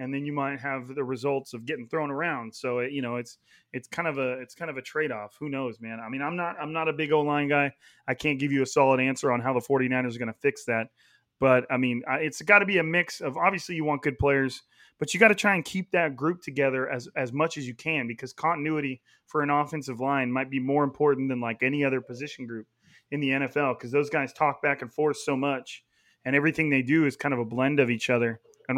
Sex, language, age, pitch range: male, English, 30-49, 130-155 Hz